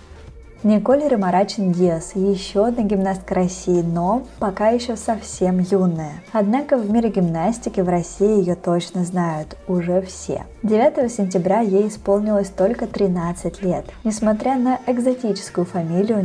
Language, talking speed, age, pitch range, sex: Russian, 120 wpm, 20-39, 175-210 Hz, female